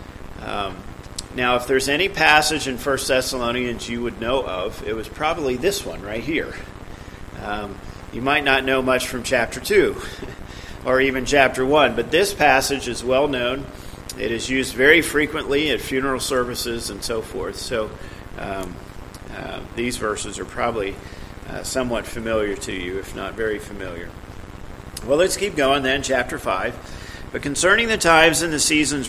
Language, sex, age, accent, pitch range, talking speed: English, male, 40-59, American, 115-145 Hz, 165 wpm